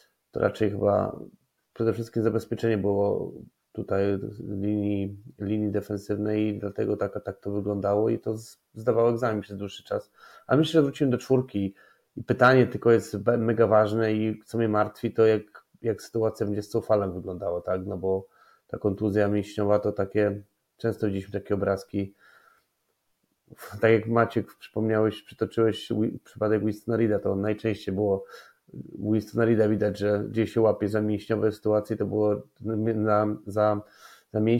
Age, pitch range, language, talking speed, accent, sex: 30-49, 105-115 Hz, Polish, 145 wpm, native, male